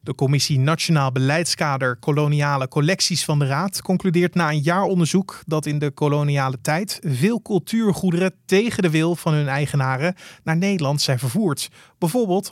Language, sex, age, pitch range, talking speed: Dutch, male, 30-49, 145-180 Hz, 155 wpm